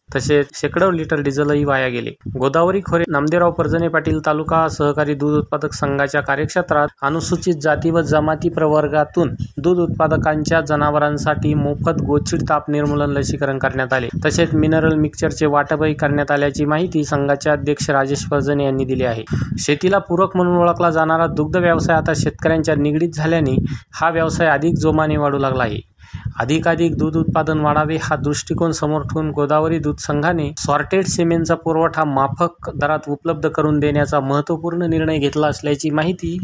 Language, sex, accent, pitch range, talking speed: Marathi, male, native, 145-165 Hz, 115 wpm